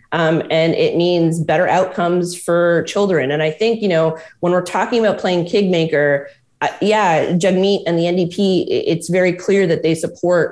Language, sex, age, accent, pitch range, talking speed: English, female, 20-39, American, 155-195 Hz, 175 wpm